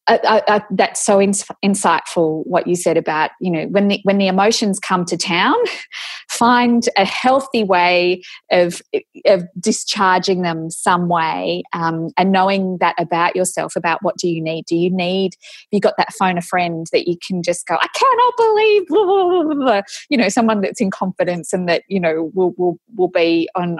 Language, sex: English, female